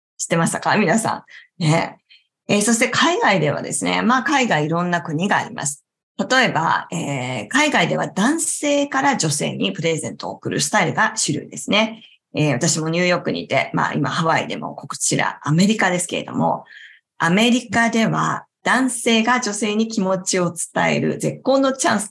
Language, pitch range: Japanese, 165-235 Hz